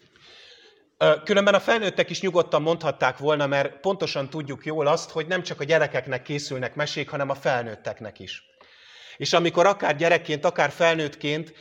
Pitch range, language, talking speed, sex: 140-175 Hz, English, 150 wpm, male